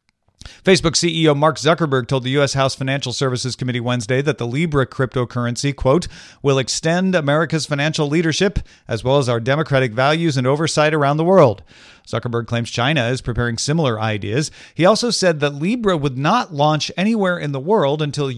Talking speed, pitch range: 175 wpm, 125-160 Hz